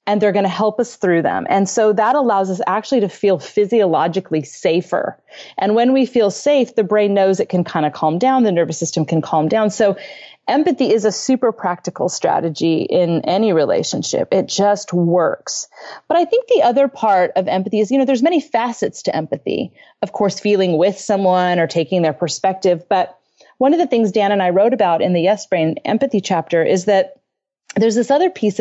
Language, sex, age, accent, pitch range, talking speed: English, female, 30-49, American, 180-230 Hz, 205 wpm